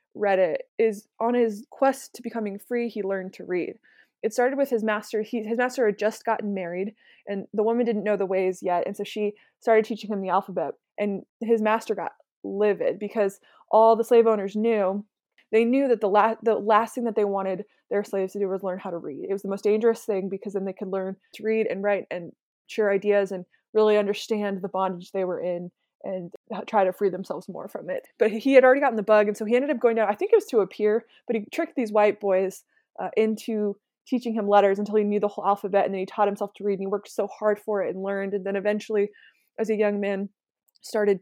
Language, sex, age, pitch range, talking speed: English, female, 20-39, 195-225 Hz, 245 wpm